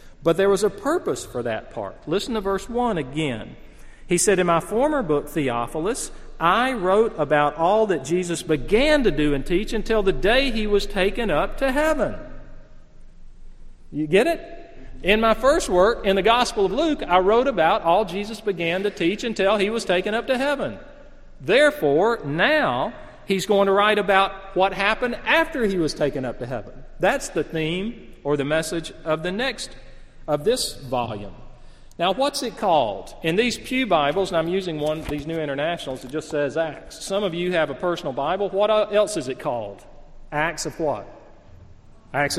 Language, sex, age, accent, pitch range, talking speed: English, male, 40-59, American, 155-220 Hz, 185 wpm